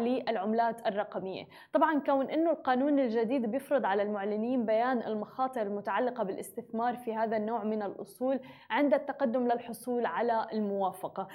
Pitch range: 225-270 Hz